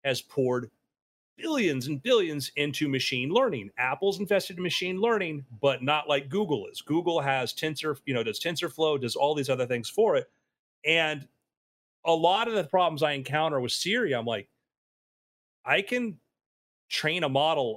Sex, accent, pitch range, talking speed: male, American, 130-180 Hz, 165 wpm